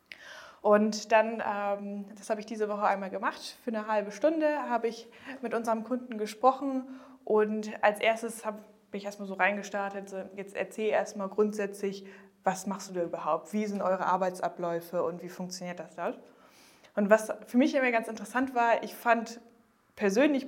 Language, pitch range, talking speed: English, 190-225 Hz, 165 wpm